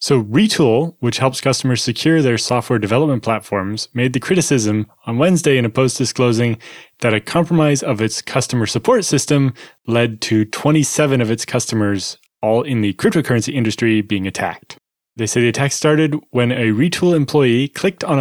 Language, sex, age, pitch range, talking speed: English, male, 20-39, 110-140 Hz, 170 wpm